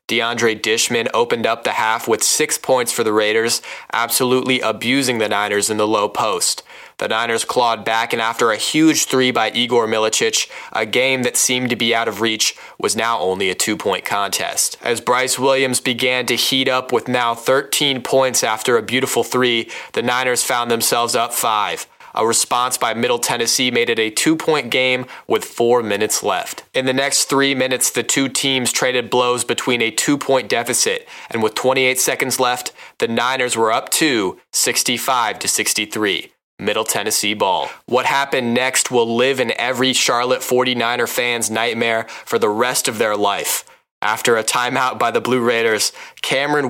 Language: English